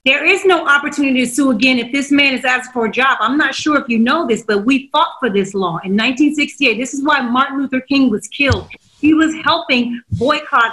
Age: 30-49